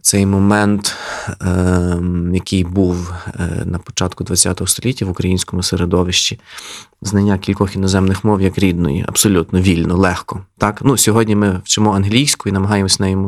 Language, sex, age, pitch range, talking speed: Ukrainian, male, 20-39, 95-110 Hz, 140 wpm